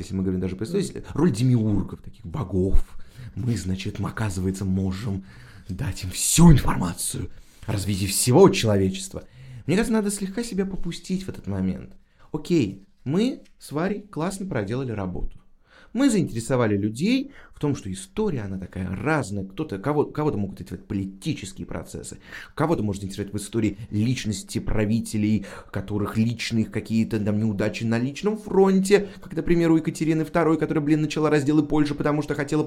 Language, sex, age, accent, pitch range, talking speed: Russian, male, 30-49, native, 100-160 Hz, 150 wpm